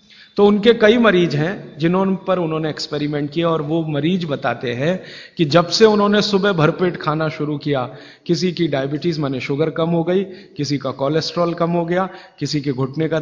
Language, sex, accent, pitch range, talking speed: Hindi, male, native, 155-195 Hz, 190 wpm